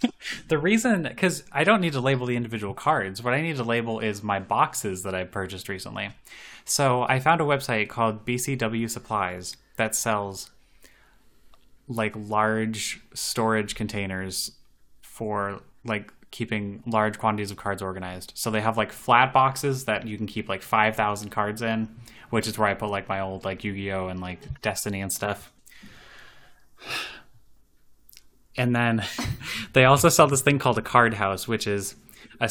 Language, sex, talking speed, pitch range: English, male, 160 wpm, 100-120 Hz